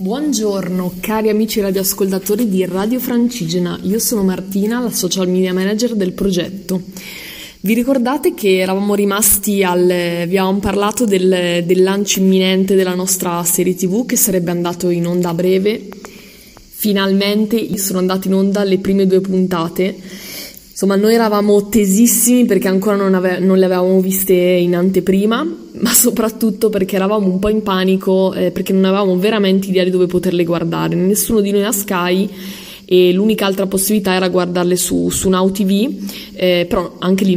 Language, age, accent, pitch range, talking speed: Italian, 20-39, native, 185-210 Hz, 160 wpm